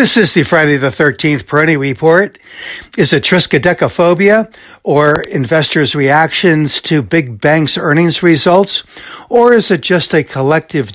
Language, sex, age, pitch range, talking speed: English, male, 60-79, 125-155 Hz, 135 wpm